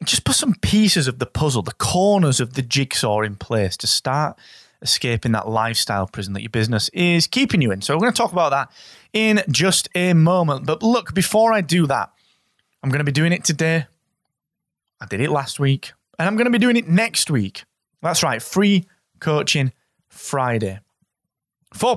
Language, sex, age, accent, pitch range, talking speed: English, male, 20-39, British, 125-170 Hz, 195 wpm